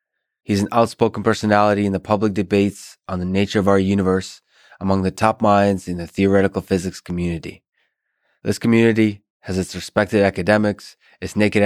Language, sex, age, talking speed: English, male, 20-39, 160 wpm